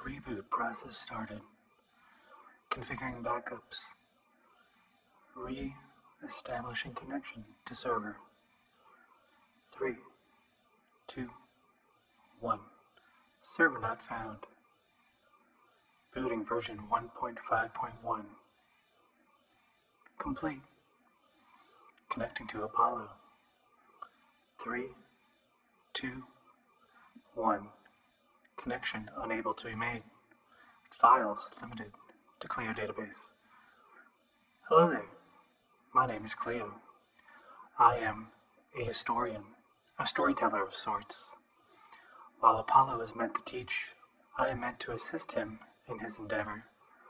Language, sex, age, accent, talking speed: English, male, 30-49, American, 80 wpm